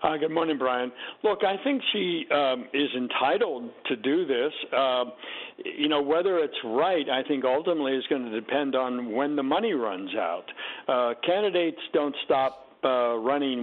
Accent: American